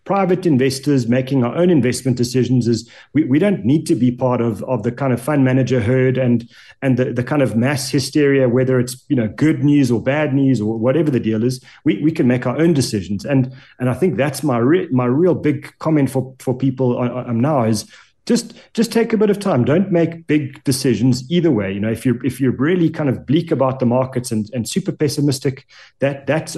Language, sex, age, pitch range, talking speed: English, male, 30-49, 125-150 Hz, 230 wpm